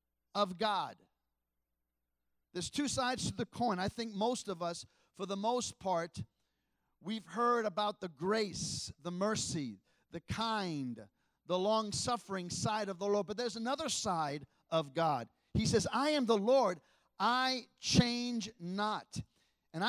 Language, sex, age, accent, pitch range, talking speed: English, male, 40-59, American, 180-235 Hz, 145 wpm